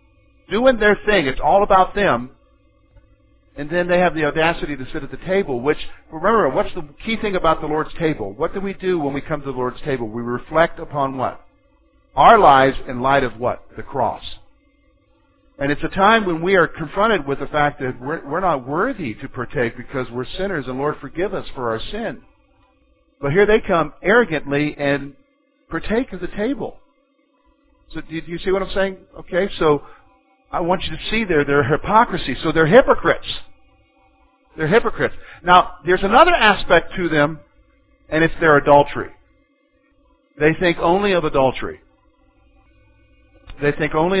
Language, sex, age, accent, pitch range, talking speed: English, male, 50-69, American, 130-185 Hz, 175 wpm